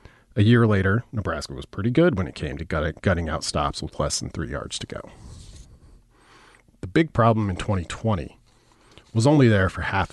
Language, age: English, 40-59